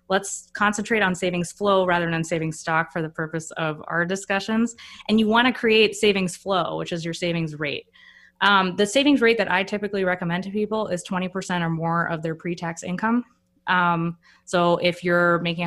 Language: English